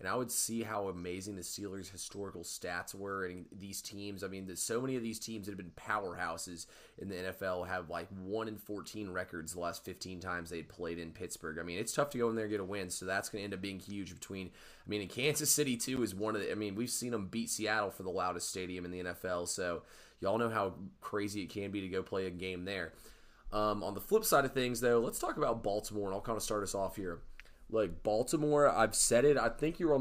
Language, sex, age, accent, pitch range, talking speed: English, male, 20-39, American, 95-115 Hz, 270 wpm